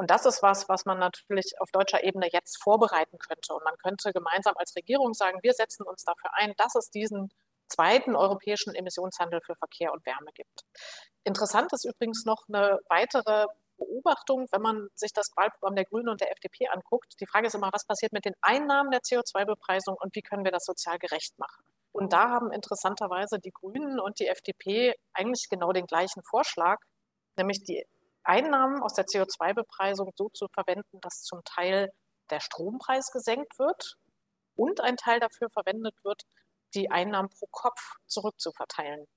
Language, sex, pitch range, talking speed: German, female, 185-225 Hz, 175 wpm